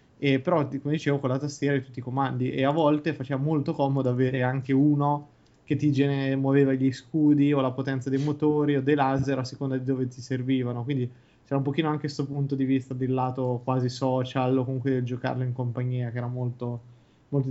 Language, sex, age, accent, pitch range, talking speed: Italian, male, 20-39, native, 130-145 Hz, 215 wpm